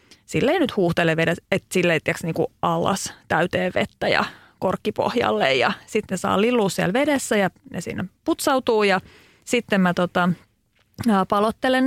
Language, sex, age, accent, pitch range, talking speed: Finnish, female, 30-49, native, 175-240 Hz, 140 wpm